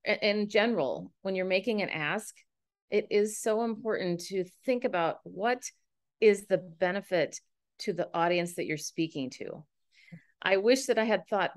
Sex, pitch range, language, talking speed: female, 165-210 Hz, English, 160 wpm